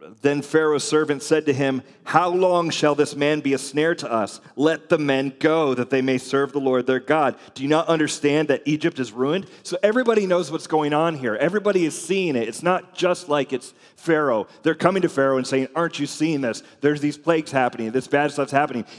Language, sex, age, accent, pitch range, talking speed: English, male, 30-49, American, 125-155 Hz, 225 wpm